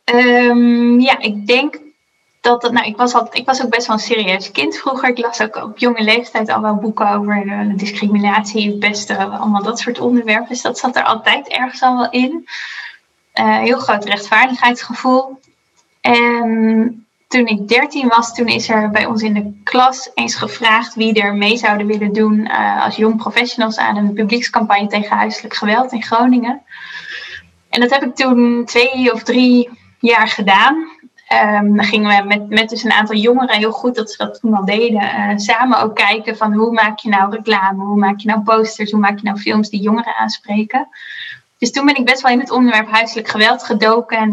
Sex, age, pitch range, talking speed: female, 10-29, 210-245 Hz, 190 wpm